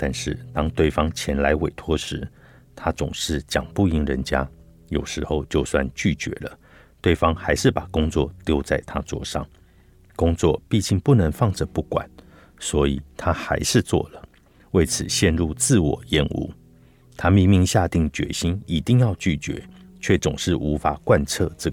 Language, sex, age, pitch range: Chinese, male, 50-69, 80-105 Hz